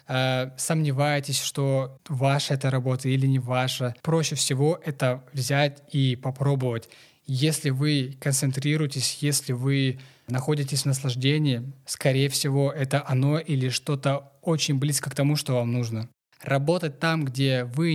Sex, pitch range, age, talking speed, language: male, 130-150 Hz, 20-39, 130 wpm, Russian